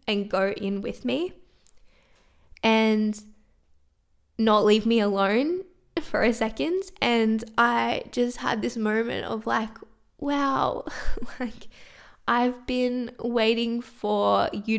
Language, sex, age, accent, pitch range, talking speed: English, female, 10-29, Australian, 200-235 Hz, 115 wpm